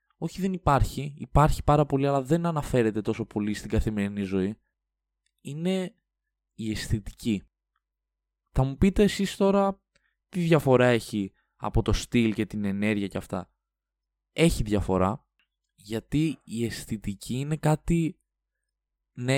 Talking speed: 125 wpm